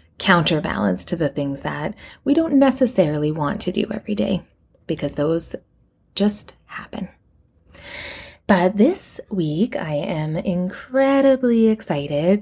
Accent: American